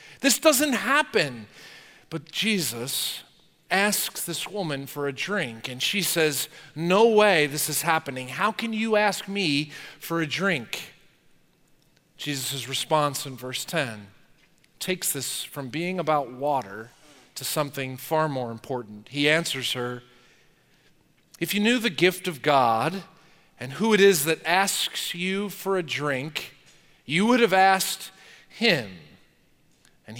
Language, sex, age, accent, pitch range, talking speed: English, male, 40-59, American, 145-215 Hz, 135 wpm